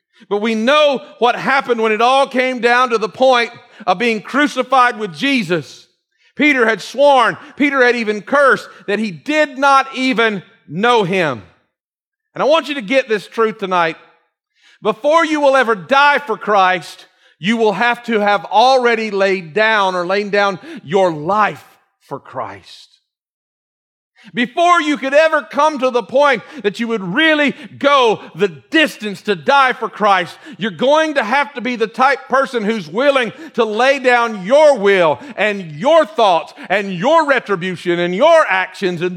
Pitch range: 205-270 Hz